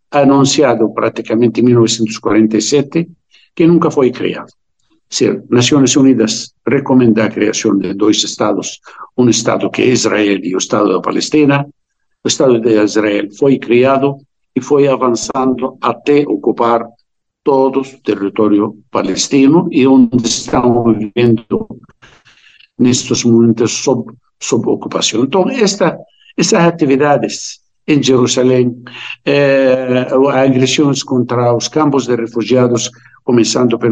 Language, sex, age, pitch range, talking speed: Portuguese, male, 60-79, 115-145 Hz, 120 wpm